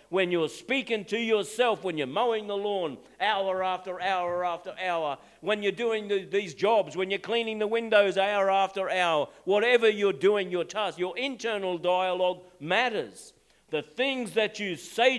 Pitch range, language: 170-220 Hz, English